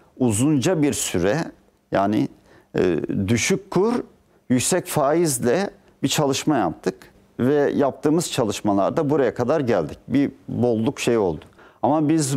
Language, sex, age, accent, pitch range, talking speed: Turkish, male, 50-69, native, 125-160 Hz, 115 wpm